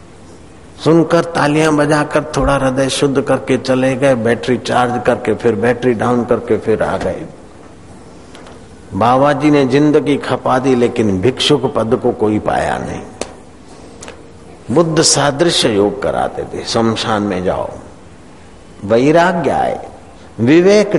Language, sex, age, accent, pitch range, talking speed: Hindi, male, 60-79, native, 100-140 Hz, 125 wpm